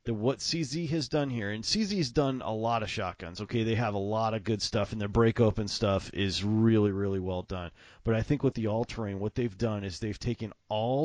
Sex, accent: male, American